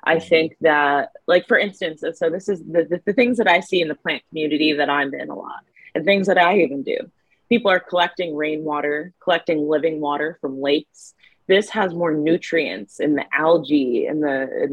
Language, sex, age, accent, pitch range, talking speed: English, female, 20-39, American, 150-185 Hz, 205 wpm